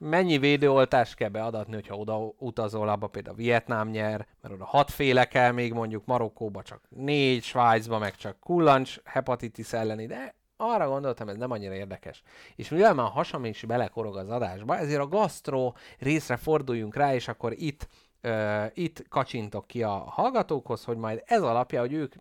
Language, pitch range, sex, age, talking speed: Hungarian, 110-140 Hz, male, 30-49, 170 wpm